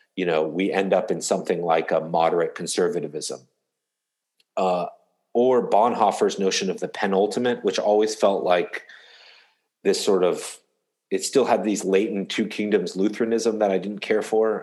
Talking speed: 155 wpm